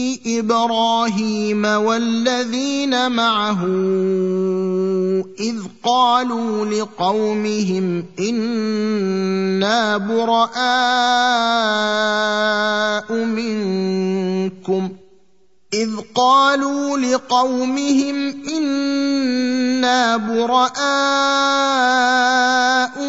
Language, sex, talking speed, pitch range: Arabic, male, 35 wpm, 215-255 Hz